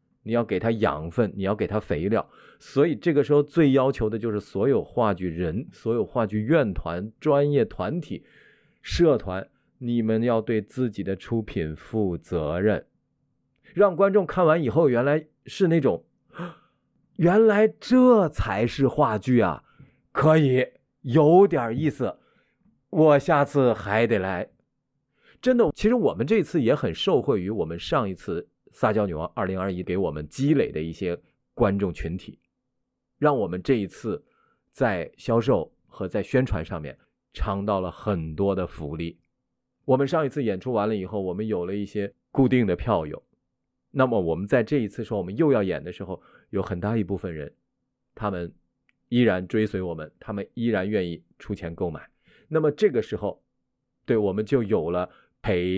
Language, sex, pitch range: Chinese, male, 95-140 Hz